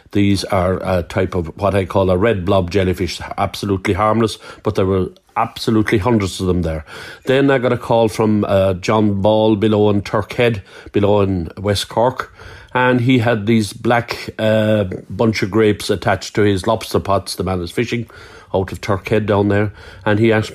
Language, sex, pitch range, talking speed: English, male, 95-110 Hz, 185 wpm